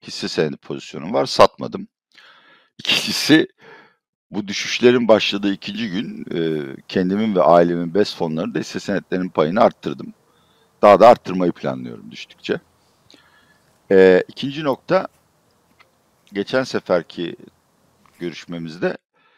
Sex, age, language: male, 60-79, Turkish